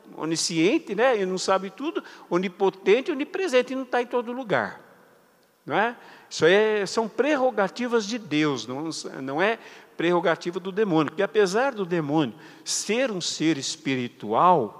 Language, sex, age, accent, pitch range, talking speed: Portuguese, male, 60-79, Brazilian, 160-255 Hz, 145 wpm